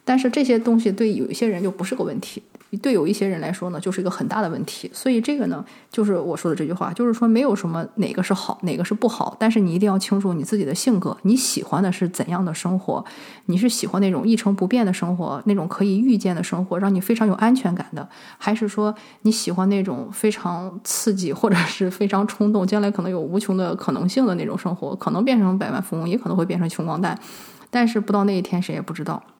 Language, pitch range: English, 180-220 Hz